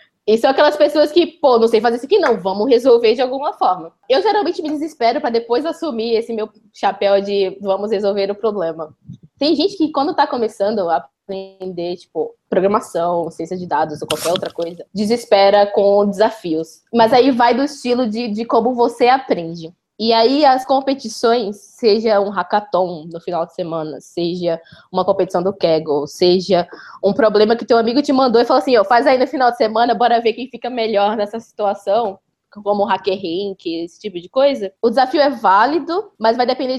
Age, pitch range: 20-39, 195-260 Hz